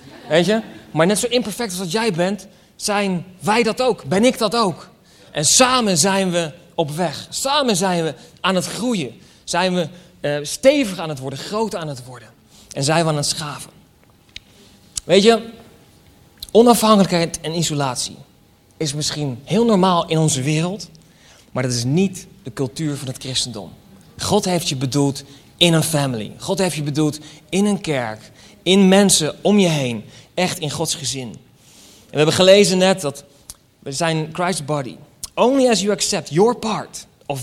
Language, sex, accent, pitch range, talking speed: Dutch, male, Dutch, 145-200 Hz, 175 wpm